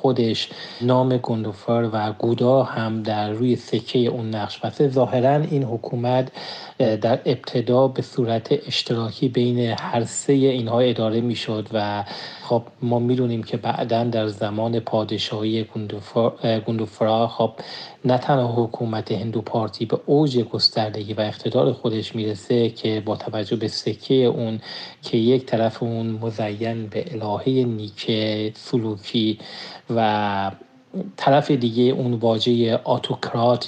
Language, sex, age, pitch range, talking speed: Persian, male, 40-59, 110-125 Hz, 130 wpm